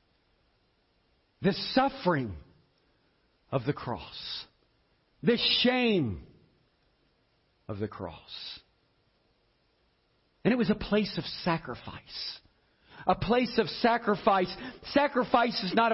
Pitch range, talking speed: 130-195 Hz, 90 wpm